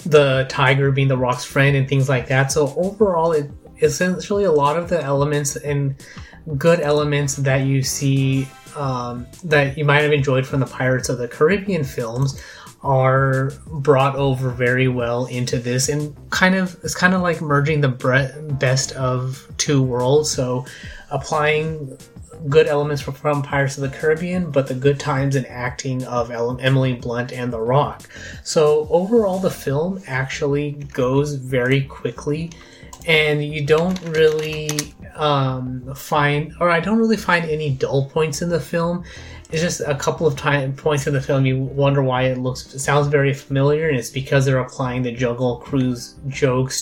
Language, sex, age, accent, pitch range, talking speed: English, male, 20-39, American, 130-150 Hz, 170 wpm